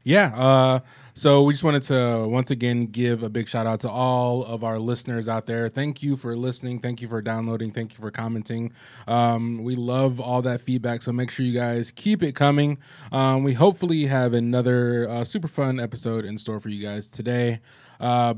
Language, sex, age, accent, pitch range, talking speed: English, male, 20-39, American, 115-145 Hz, 205 wpm